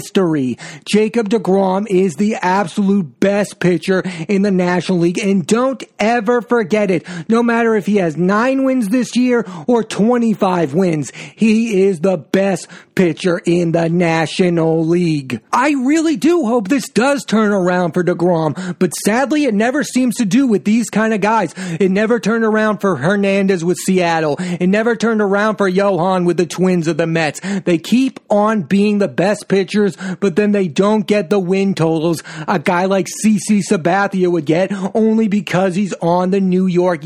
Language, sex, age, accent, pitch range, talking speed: English, male, 30-49, American, 180-215 Hz, 180 wpm